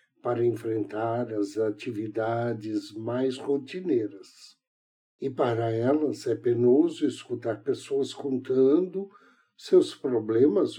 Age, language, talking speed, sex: 60-79, Portuguese, 90 wpm, male